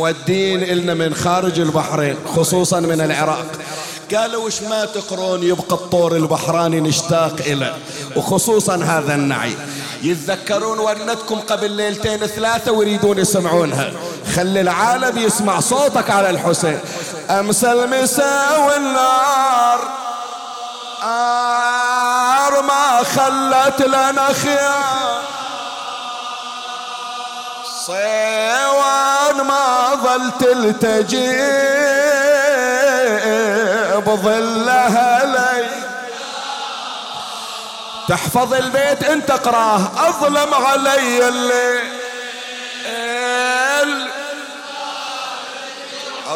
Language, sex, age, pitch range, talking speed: Arabic, male, 50-69, 195-260 Hz, 70 wpm